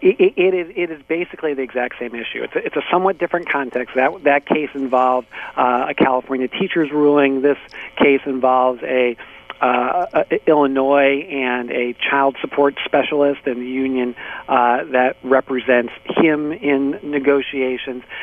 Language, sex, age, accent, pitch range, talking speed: English, male, 50-69, American, 130-150 Hz, 160 wpm